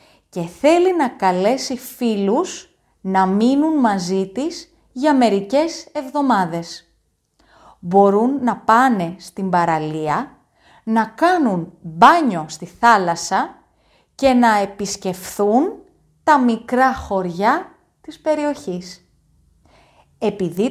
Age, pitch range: 30-49, 190-290 Hz